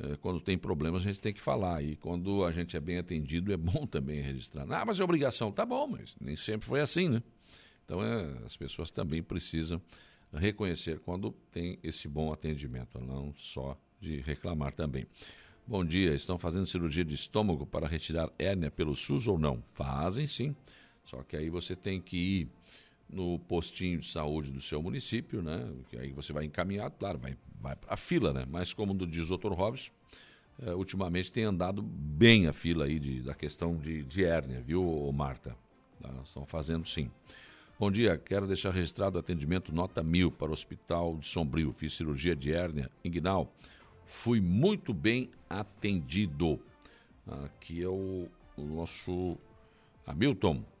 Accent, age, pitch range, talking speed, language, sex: Brazilian, 60-79, 75-95 Hz, 170 wpm, Portuguese, male